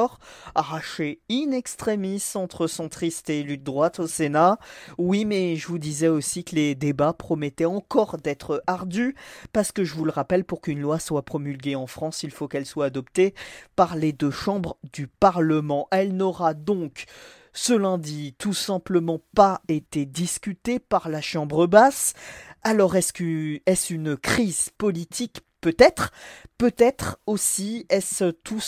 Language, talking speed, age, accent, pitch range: French, 150 wpm, 40-59, French, 155-195 Hz